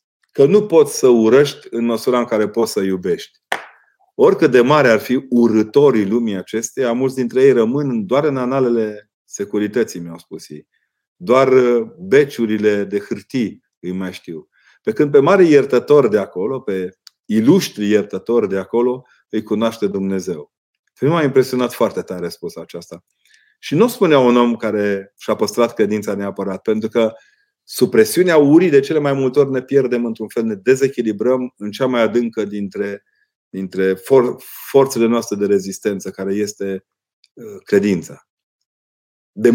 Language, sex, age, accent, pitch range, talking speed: Romanian, male, 30-49, native, 100-130 Hz, 150 wpm